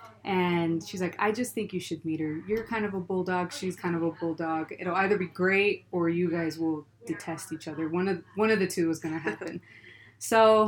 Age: 20-39